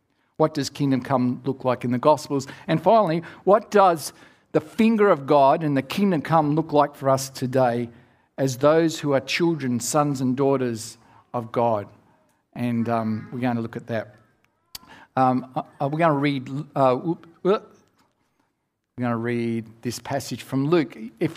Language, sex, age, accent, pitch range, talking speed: English, male, 50-69, Australian, 125-160 Hz, 155 wpm